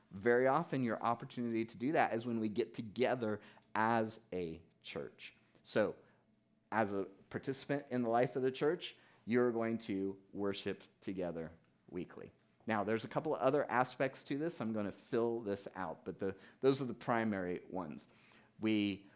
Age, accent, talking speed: 30-49, American, 165 wpm